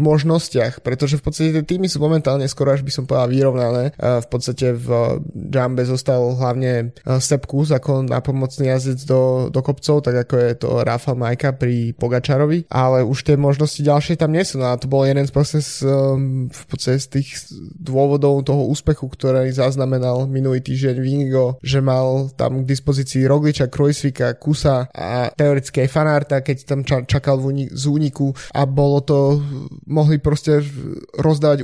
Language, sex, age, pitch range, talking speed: Slovak, male, 20-39, 130-145 Hz, 155 wpm